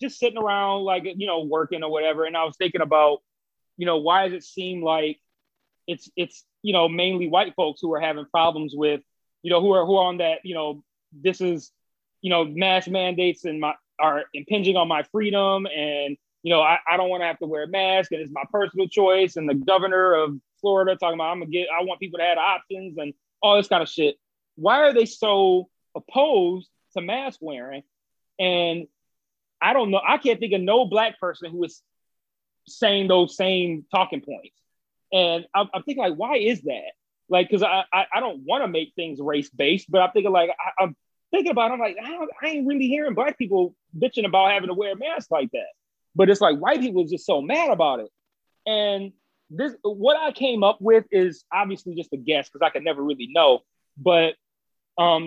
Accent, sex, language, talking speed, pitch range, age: American, male, English, 220 wpm, 165-205 Hz, 30-49